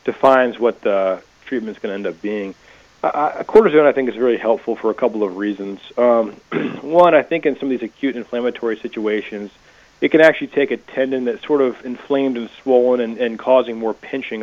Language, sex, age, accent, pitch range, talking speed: English, male, 30-49, American, 105-125 Hz, 210 wpm